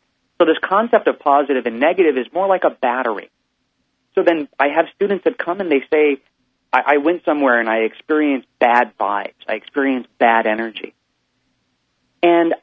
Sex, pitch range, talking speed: male, 120-155 Hz, 170 wpm